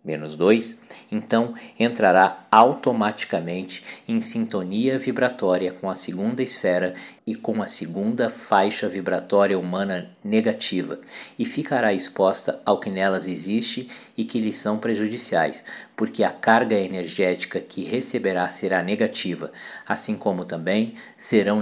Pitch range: 95-115 Hz